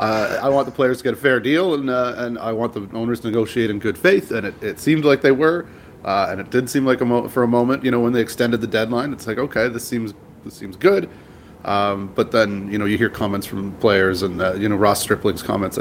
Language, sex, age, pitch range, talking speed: English, male, 30-49, 110-125 Hz, 275 wpm